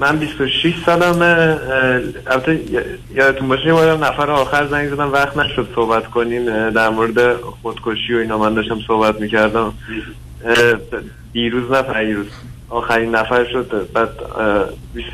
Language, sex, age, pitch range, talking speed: Persian, male, 30-49, 110-135 Hz, 145 wpm